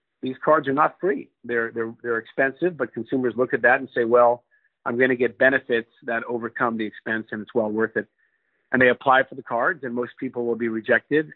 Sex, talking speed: male, 225 wpm